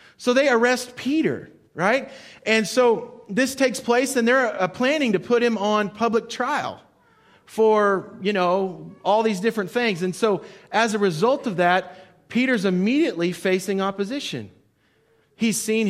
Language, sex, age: English, male, 30-49